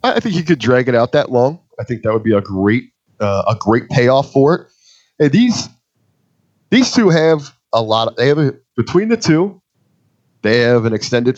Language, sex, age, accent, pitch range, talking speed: English, male, 30-49, American, 115-150 Hz, 210 wpm